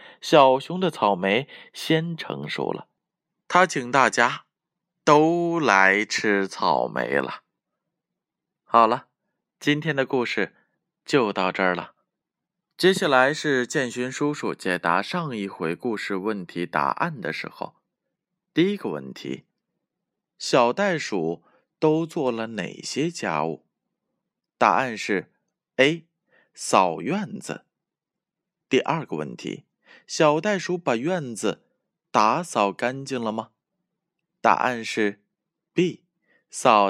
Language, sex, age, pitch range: Chinese, male, 20-39, 110-170 Hz